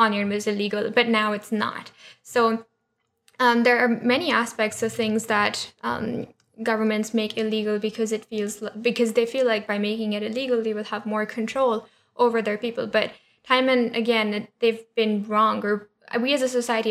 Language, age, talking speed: English, 10-29, 180 wpm